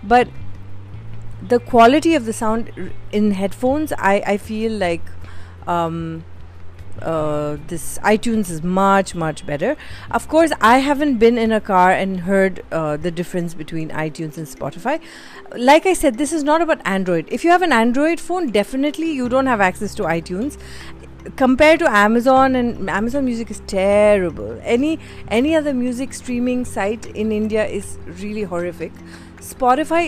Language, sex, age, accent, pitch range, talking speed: English, female, 30-49, Indian, 180-255 Hz, 155 wpm